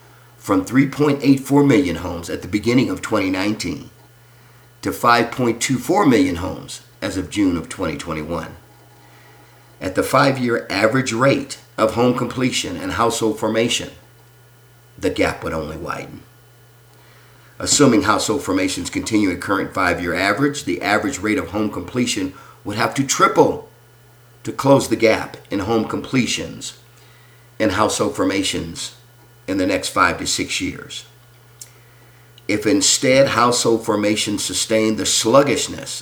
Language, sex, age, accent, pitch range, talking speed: English, male, 50-69, American, 110-130 Hz, 125 wpm